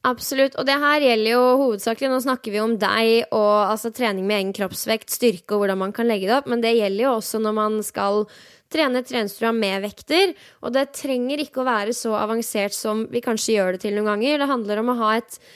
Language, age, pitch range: English, 10-29, 215-265 Hz